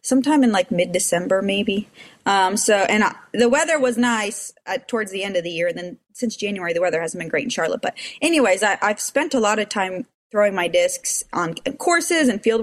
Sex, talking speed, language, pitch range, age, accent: female, 215 wpm, English, 200-265 Hz, 20-39, American